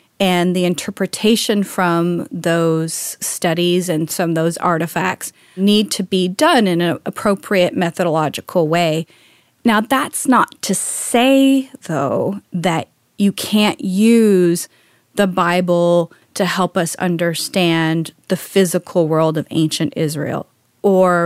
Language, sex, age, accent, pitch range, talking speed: English, female, 30-49, American, 170-210 Hz, 120 wpm